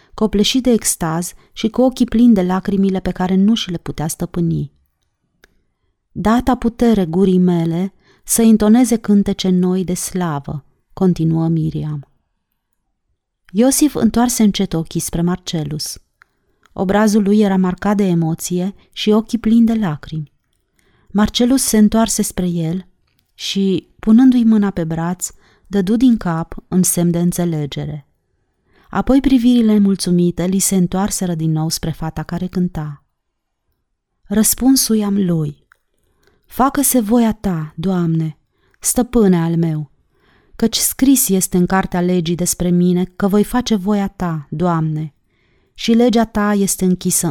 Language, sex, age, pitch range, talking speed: Romanian, female, 30-49, 165-215 Hz, 130 wpm